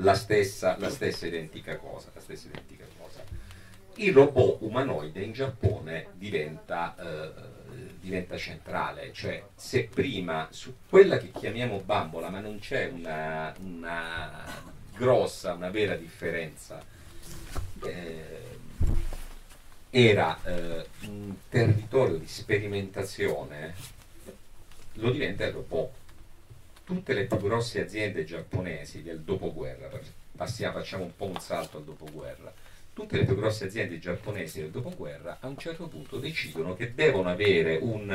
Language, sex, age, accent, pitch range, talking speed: Italian, male, 40-59, native, 80-105 Hz, 125 wpm